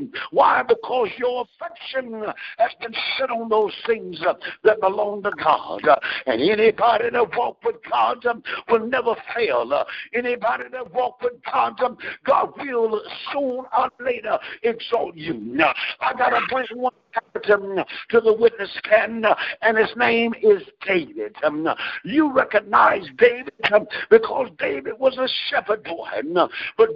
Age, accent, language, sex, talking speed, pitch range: 60-79, American, English, male, 135 wpm, 225-305 Hz